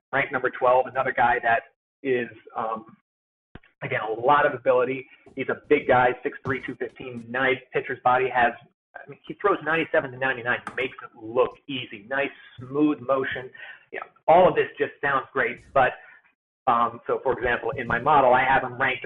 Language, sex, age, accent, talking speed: English, male, 40-59, American, 190 wpm